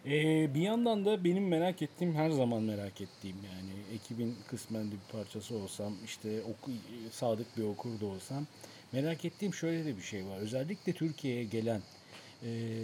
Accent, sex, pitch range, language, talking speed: native, male, 105-130 Hz, Turkish, 155 wpm